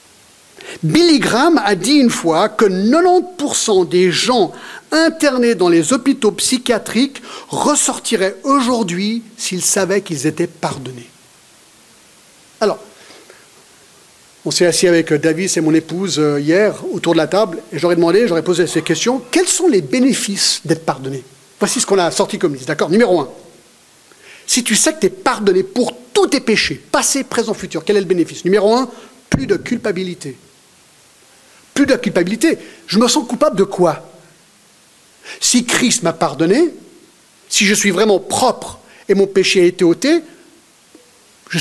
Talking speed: 155 wpm